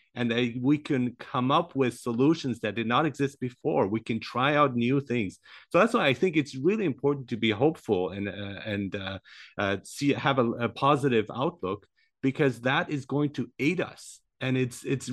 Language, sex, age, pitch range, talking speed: English, male, 30-49, 105-135 Hz, 200 wpm